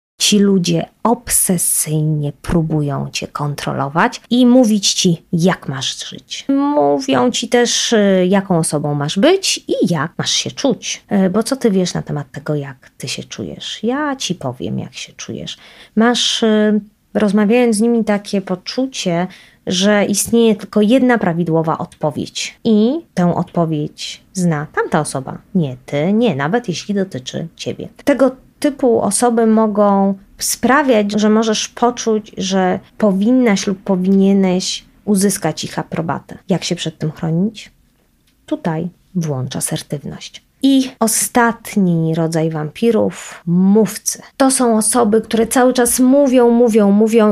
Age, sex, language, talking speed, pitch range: 20-39, female, Polish, 130 wpm, 175-235 Hz